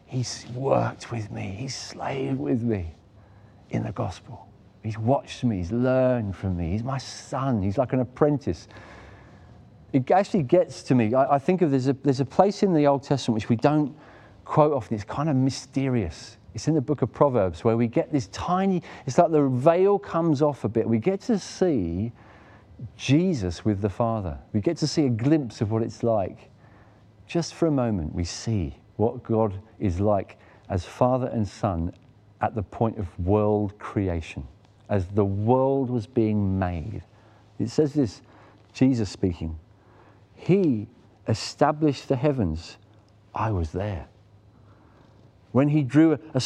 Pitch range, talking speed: 105-135 Hz, 170 wpm